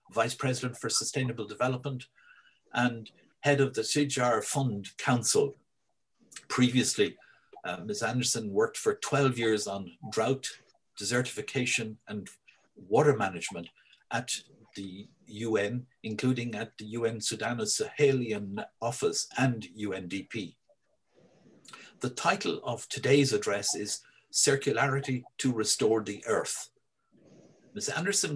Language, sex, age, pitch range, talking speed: English, male, 60-79, 115-140 Hz, 105 wpm